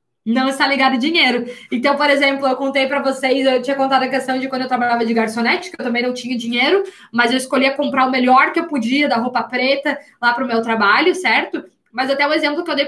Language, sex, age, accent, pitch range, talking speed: Portuguese, female, 20-39, Brazilian, 250-320 Hz, 250 wpm